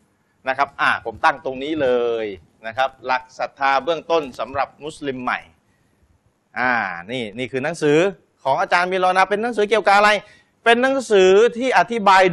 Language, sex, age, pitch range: Thai, male, 30-49, 135-195 Hz